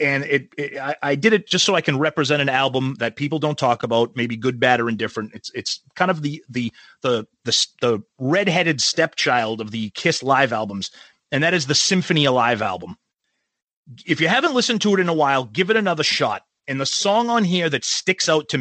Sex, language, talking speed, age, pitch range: male, English, 220 wpm, 30-49, 135-195 Hz